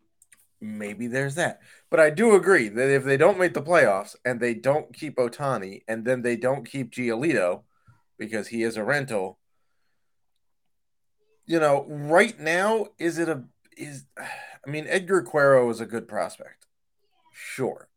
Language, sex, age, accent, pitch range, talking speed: English, male, 30-49, American, 115-165 Hz, 155 wpm